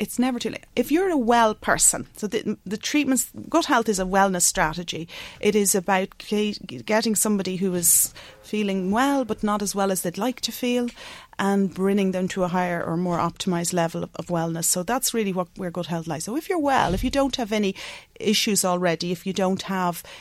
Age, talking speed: 30-49, 215 wpm